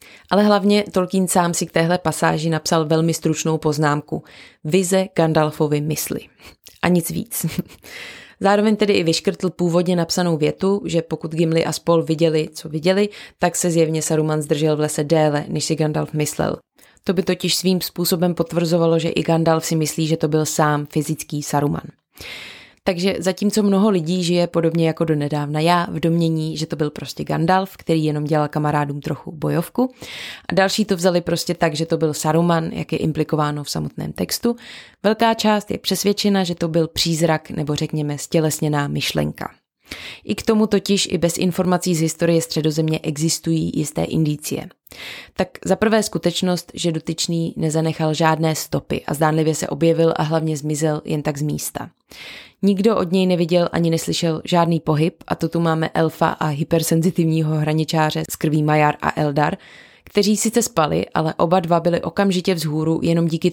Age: 20-39